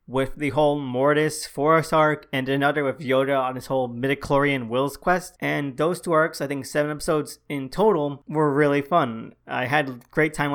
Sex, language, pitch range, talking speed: male, English, 130-155 Hz, 195 wpm